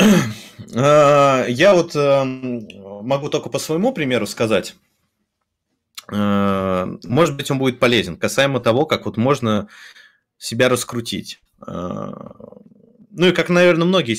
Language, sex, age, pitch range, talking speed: English, male, 20-39, 110-145 Hz, 105 wpm